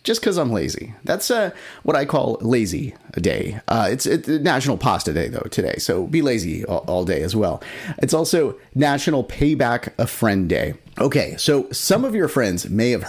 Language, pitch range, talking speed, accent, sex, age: English, 105-150 Hz, 195 wpm, American, male, 30-49